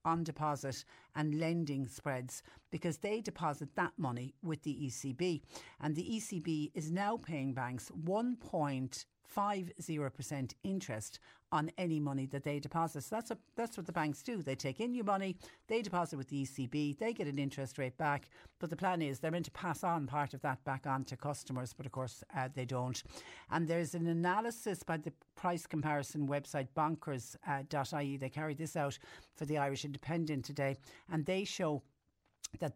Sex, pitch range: female, 135-165 Hz